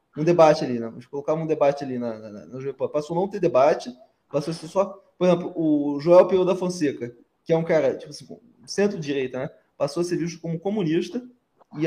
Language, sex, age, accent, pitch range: Japanese, male, 20-39, Brazilian, 160-225 Hz